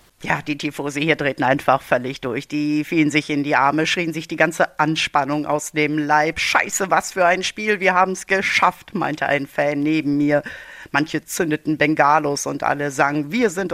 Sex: female